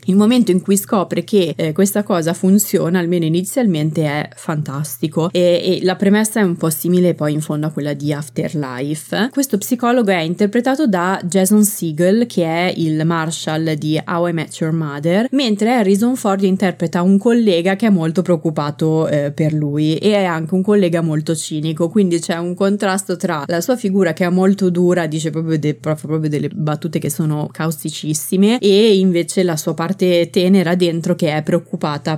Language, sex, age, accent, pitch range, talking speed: Italian, female, 20-39, native, 160-195 Hz, 185 wpm